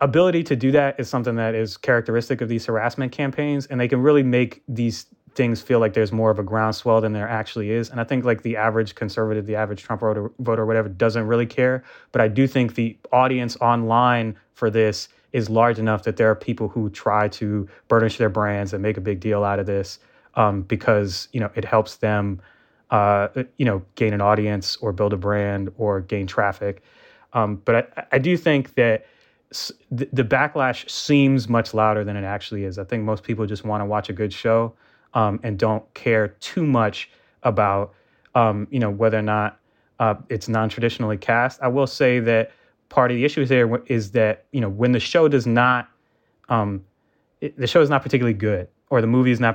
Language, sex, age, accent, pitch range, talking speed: English, male, 20-39, American, 105-125 Hz, 210 wpm